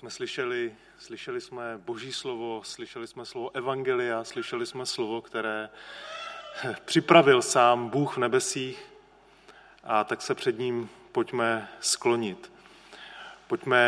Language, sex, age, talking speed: Czech, male, 30-49, 115 wpm